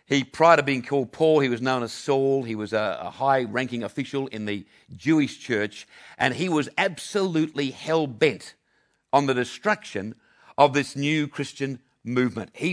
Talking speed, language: 155 wpm, English